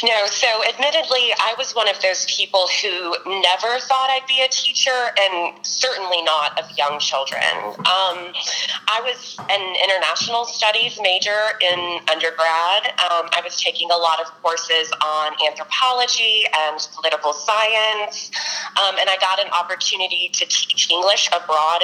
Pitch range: 160-215 Hz